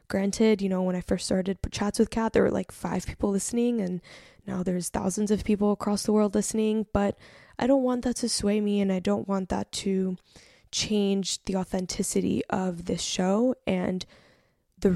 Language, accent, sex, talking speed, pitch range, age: English, American, female, 195 wpm, 190-215 Hz, 10-29